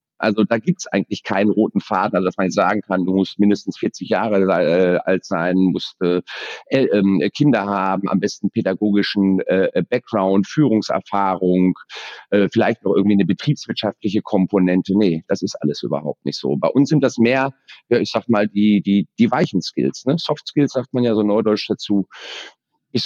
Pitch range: 105-140 Hz